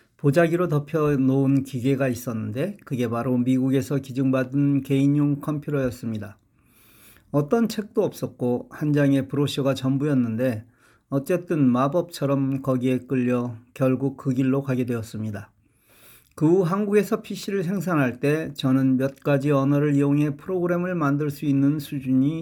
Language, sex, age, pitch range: Korean, male, 40-59, 125-155 Hz